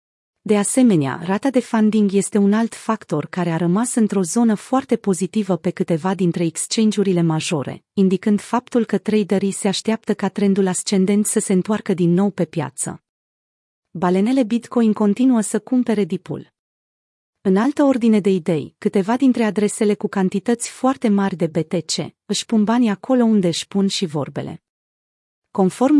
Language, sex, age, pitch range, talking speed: Romanian, female, 30-49, 180-220 Hz, 155 wpm